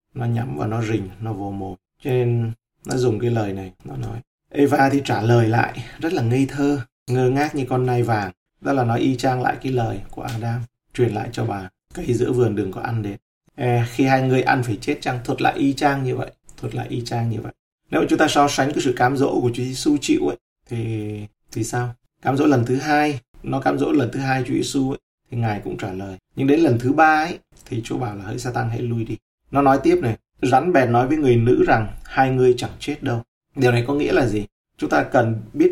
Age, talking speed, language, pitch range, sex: 20-39, 255 wpm, Vietnamese, 115-145 Hz, male